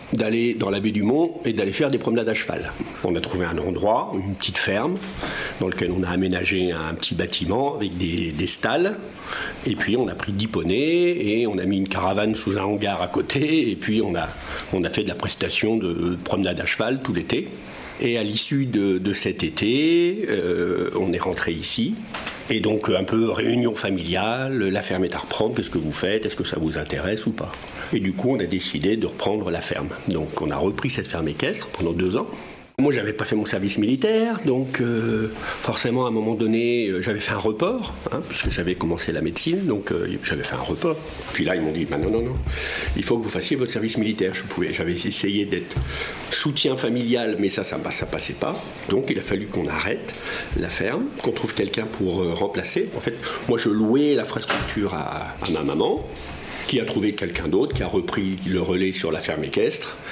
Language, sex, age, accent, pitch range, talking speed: French, male, 50-69, French, 95-120 Hz, 220 wpm